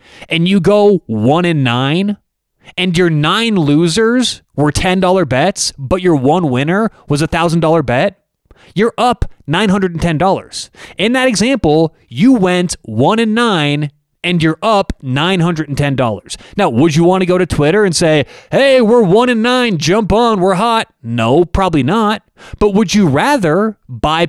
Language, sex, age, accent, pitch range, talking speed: English, male, 30-49, American, 150-210 Hz, 155 wpm